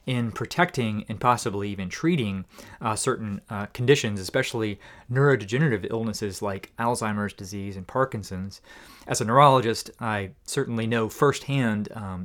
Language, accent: English, American